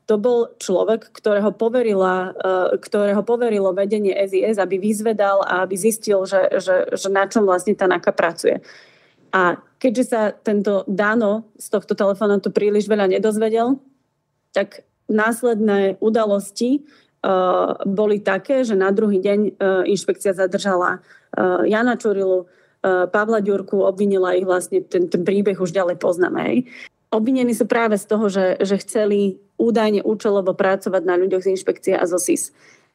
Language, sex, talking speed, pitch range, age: Slovak, female, 140 wpm, 195-225 Hz, 30-49